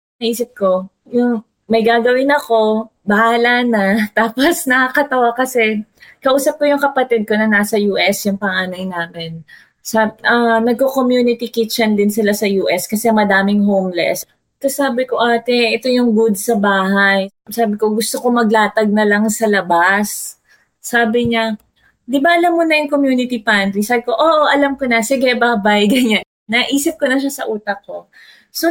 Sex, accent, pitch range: female, Filipino, 205-265 Hz